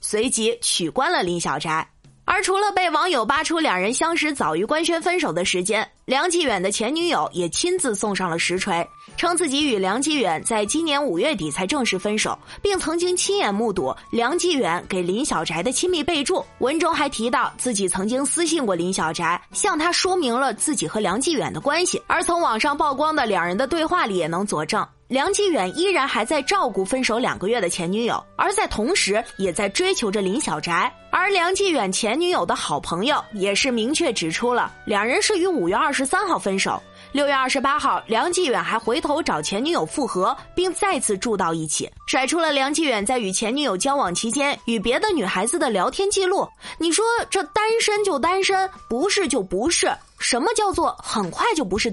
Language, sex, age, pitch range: Chinese, female, 20-39, 210-350 Hz